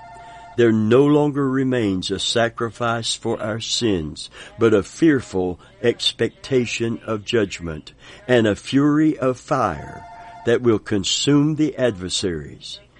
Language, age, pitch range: English, 60-79, 105-135 Hz